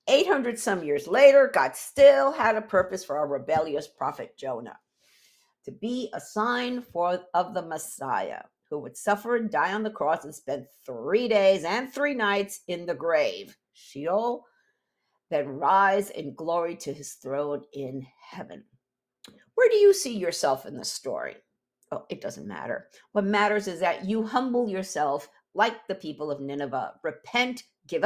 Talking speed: 160 wpm